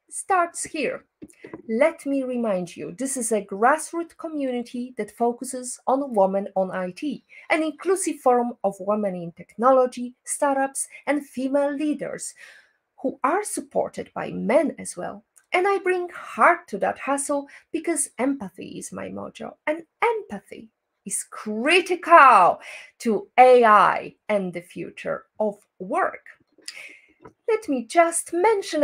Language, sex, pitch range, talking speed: English, female, 210-335 Hz, 130 wpm